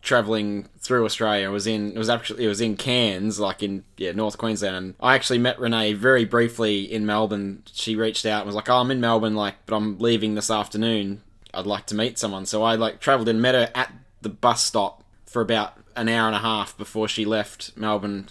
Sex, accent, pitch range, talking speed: male, Australian, 100-115 Hz, 230 wpm